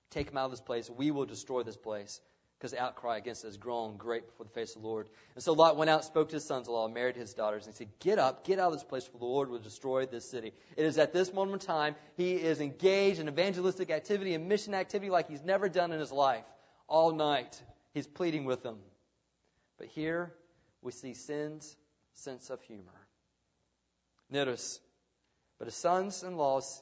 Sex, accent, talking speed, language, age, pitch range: male, American, 210 wpm, English, 30-49, 130-200 Hz